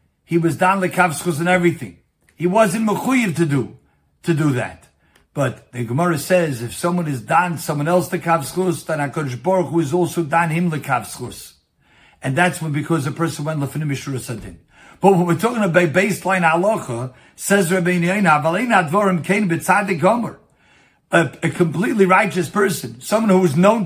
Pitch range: 165-200 Hz